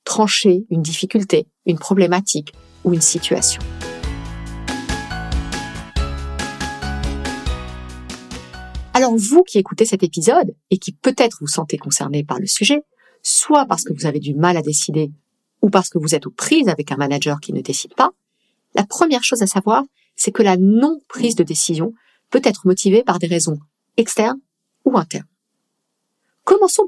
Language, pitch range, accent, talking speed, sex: French, 150-230 Hz, French, 150 wpm, female